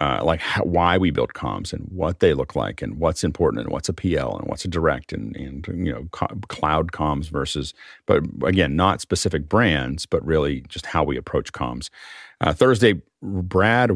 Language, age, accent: English, 40-59, American